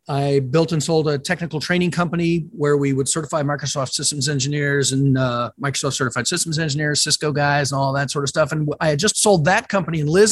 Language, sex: English, male